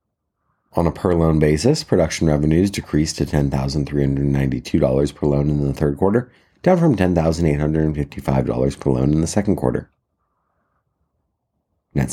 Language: English